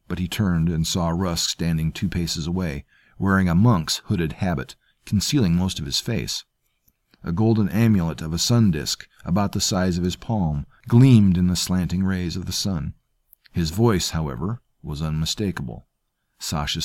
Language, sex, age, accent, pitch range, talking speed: English, male, 50-69, American, 85-115 Hz, 165 wpm